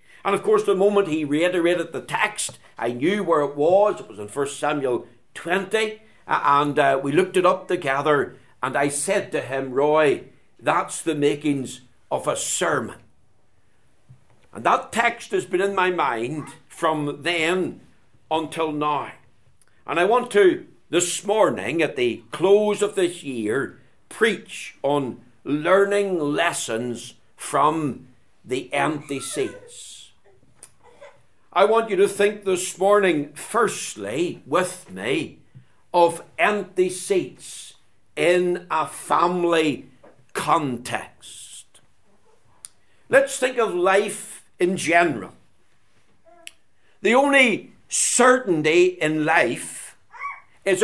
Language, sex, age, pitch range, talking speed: English, male, 60-79, 145-200 Hz, 120 wpm